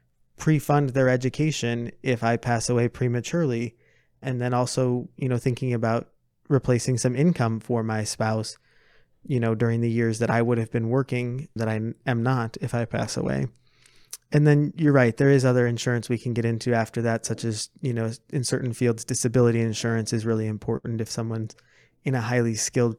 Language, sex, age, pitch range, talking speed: English, male, 20-39, 115-130 Hz, 190 wpm